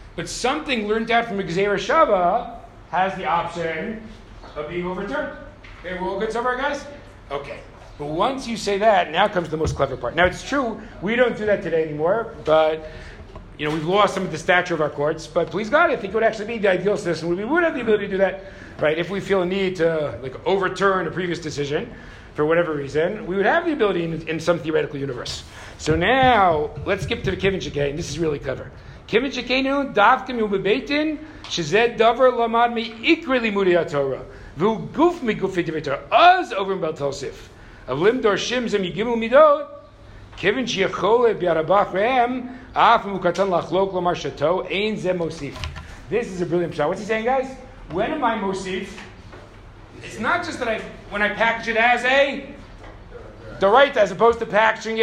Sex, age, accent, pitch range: male, 50-69, American, 155-230 Hz